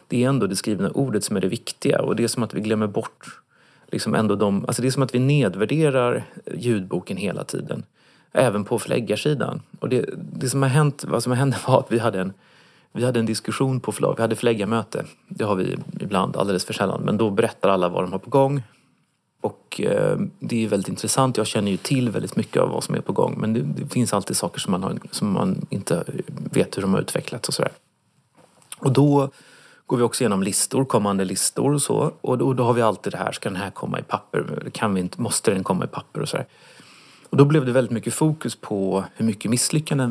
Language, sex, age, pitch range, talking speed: Swedish, male, 30-49, 105-130 Hz, 235 wpm